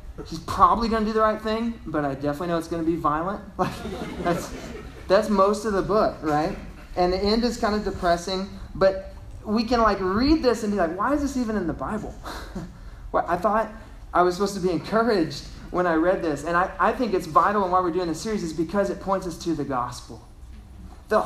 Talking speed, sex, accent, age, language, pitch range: 230 wpm, male, American, 20-39, English, 145-205 Hz